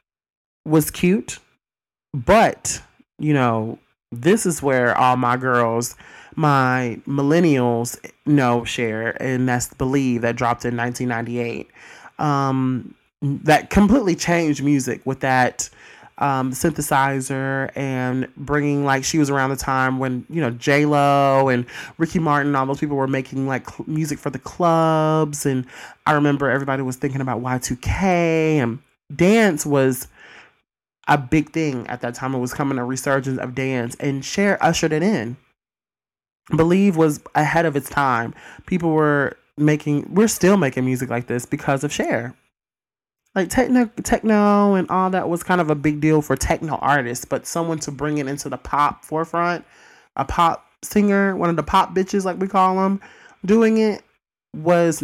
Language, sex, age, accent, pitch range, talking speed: English, male, 30-49, American, 130-165 Hz, 155 wpm